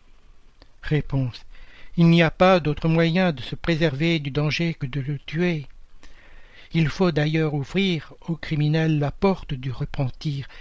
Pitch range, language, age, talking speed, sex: 130-165 Hz, French, 60-79, 145 wpm, male